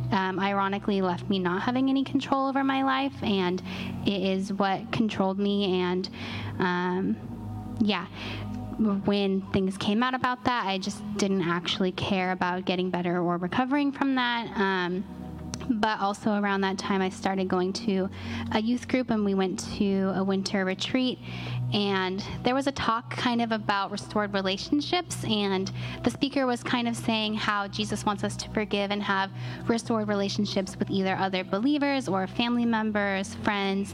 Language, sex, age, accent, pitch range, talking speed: English, female, 10-29, American, 190-215 Hz, 165 wpm